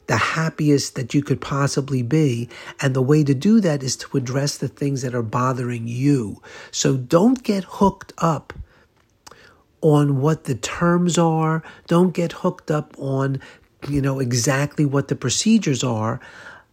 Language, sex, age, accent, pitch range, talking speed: English, male, 50-69, American, 130-160 Hz, 160 wpm